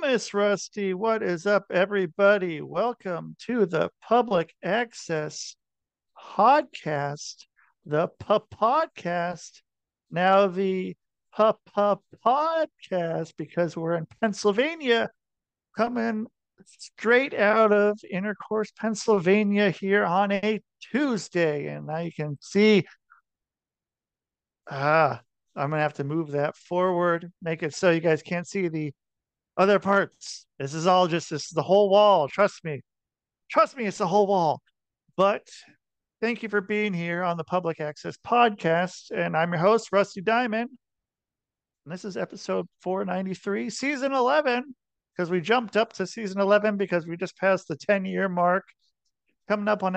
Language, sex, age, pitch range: English, male, 50-69, 170-215 Hz